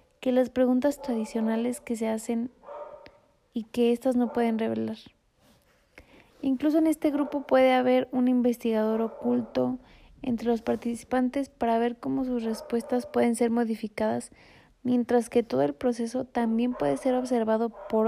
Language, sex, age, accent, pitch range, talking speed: Spanish, female, 20-39, Mexican, 225-255 Hz, 145 wpm